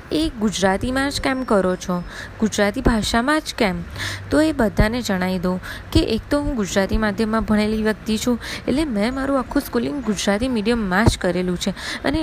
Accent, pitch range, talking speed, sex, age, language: native, 195-255 Hz, 165 wpm, female, 20-39, Gujarati